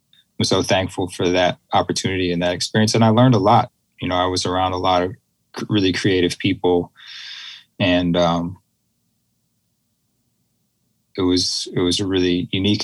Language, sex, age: English, male, 20-39